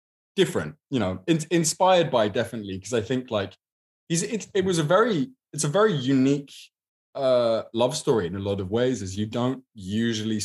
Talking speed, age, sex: 190 wpm, 20-39, male